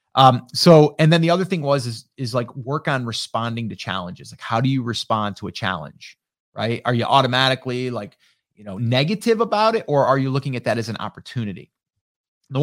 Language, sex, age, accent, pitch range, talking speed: English, male, 30-49, American, 120-165 Hz, 210 wpm